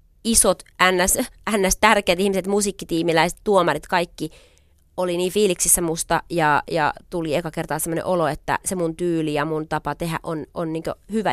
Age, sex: 30-49, female